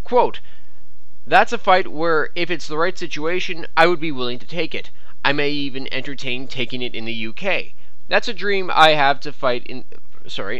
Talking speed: 190 wpm